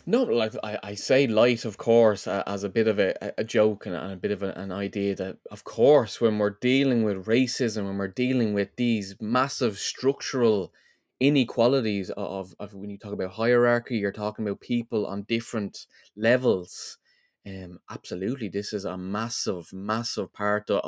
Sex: male